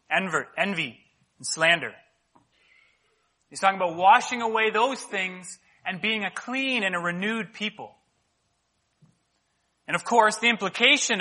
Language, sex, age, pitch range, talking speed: English, male, 30-49, 175-230 Hz, 125 wpm